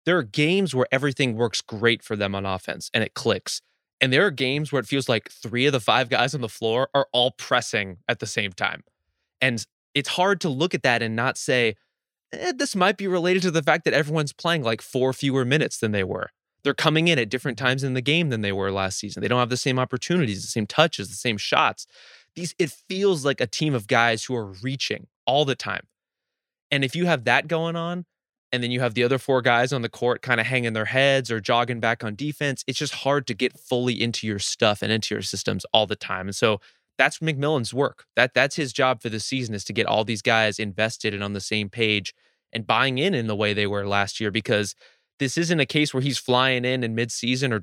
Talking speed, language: 245 wpm, English